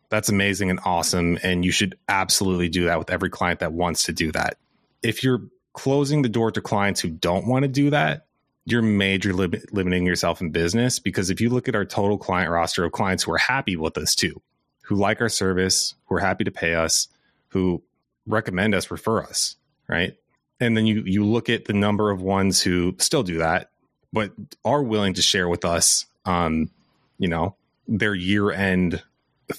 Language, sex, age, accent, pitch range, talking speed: English, male, 30-49, American, 90-110 Hz, 200 wpm